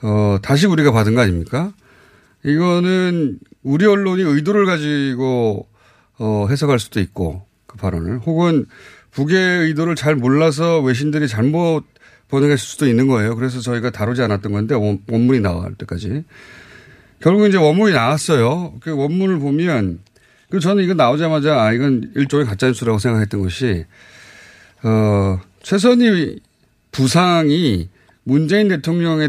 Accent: native